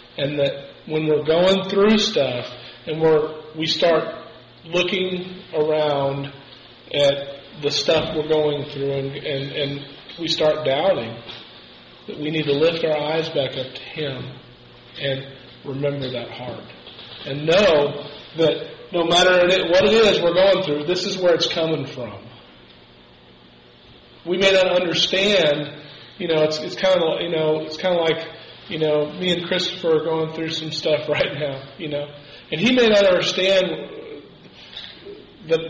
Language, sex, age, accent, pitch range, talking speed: English, male, 40-59, American, 140-175 Hz, 155 wpm